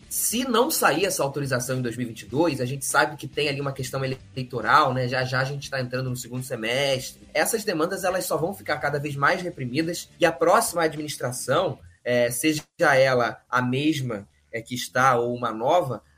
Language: Portuguese